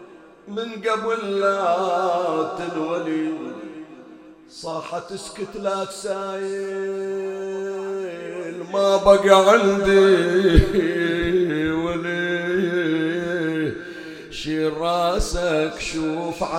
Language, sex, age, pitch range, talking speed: Arabic, male, 50-69, 160-195 Hz, 55 wpm